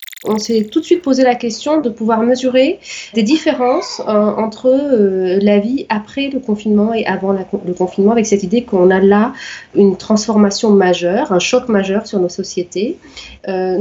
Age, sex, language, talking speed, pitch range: 30-49, female, French, 180 wpm, 190-245 Hz